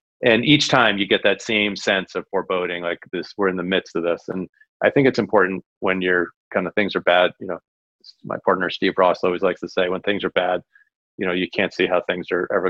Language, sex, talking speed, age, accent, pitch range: English, male, 250 wpm, 40-59, American, 95-110 Hz